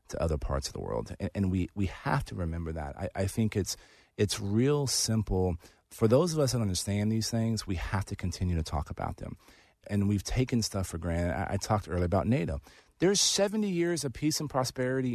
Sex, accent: male, American